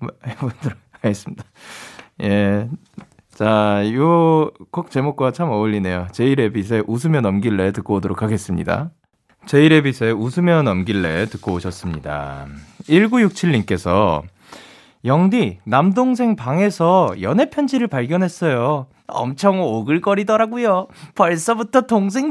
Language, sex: Korean, male